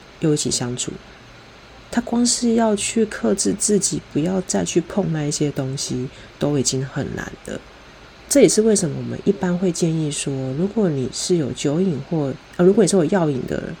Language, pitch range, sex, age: Chinese, 140-185 Hz, female, 30-49